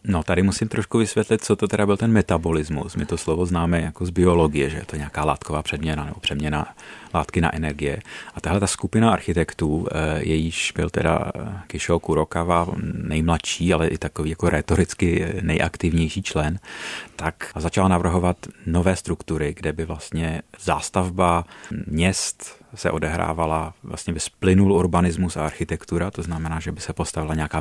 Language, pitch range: Czech, 80-90 Hz